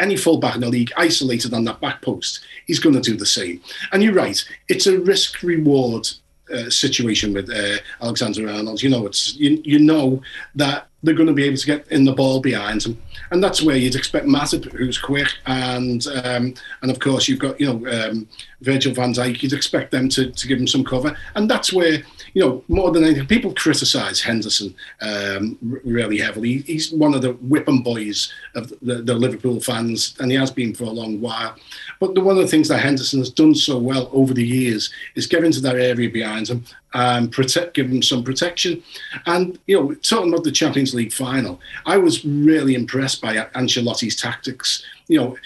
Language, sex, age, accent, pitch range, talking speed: English, male, 40-59, British, 120-150 Hz, 205 wpm